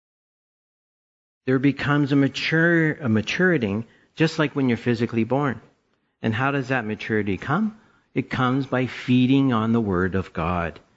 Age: 50-69